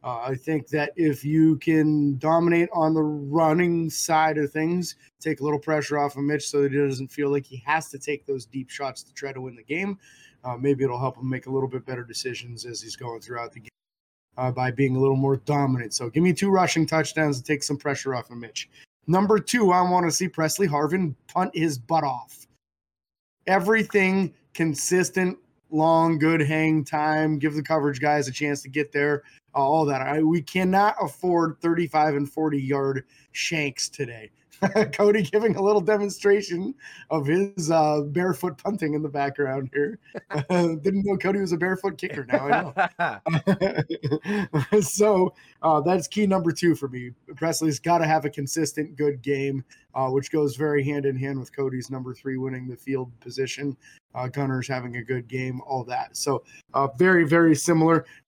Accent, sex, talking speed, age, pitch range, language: American, male, 190 wpm, 20-39, 135-170 Hz, English